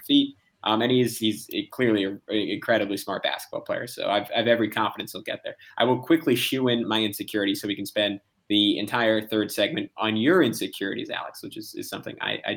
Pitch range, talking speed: 105-120 Hz, 210 wpm